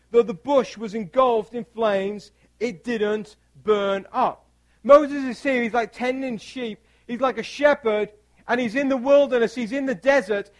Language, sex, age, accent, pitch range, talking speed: English, male, 40-59, British, 185-255 Hz, 175 wpm